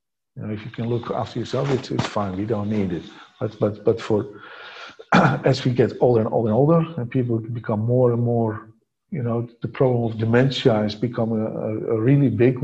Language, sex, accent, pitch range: English, male, Dutch, 120-145 Hz